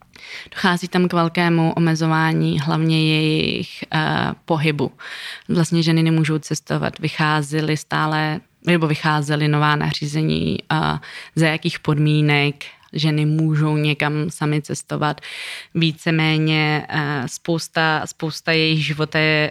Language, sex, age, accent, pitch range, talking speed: Czech, female, 20-39, native, 150-160 Hz, 110 wpm